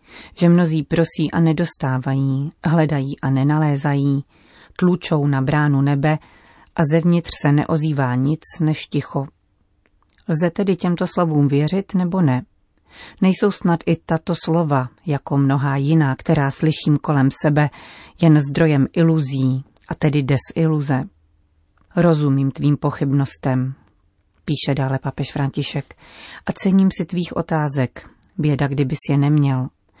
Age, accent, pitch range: 40-59, native, 140-165 Hz